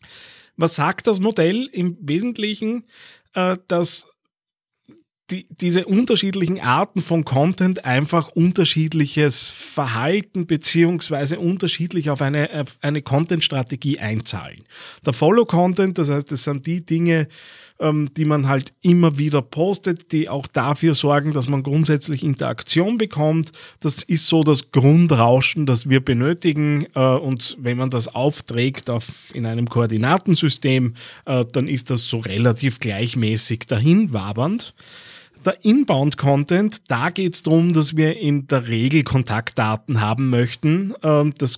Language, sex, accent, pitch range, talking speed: German, male, Austrian, 125-165 Hz, 125 wpm